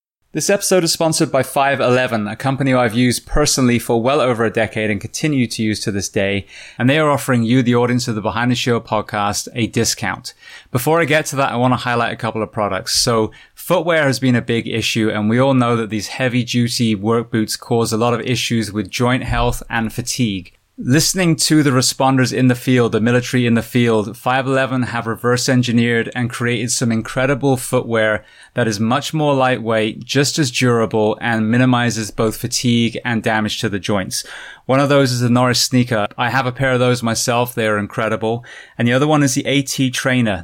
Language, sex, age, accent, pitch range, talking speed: English, male, 20-39, British, 110-130 Hz, 210 wpm